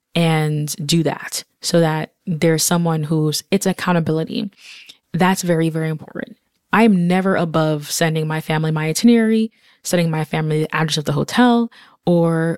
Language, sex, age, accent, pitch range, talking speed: English, female, 20-39, American, 160-200 Hz, 150 wpm